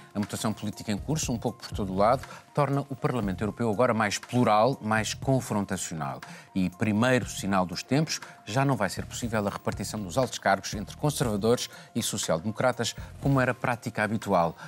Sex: male